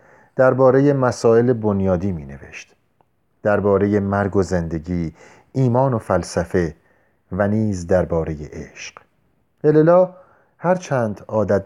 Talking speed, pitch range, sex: 95 wpm, 95-130 Hz, male